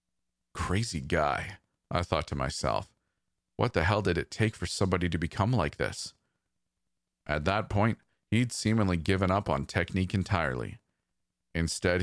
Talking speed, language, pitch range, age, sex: 145 wpm, English, 80-100 Hz, 40-59, male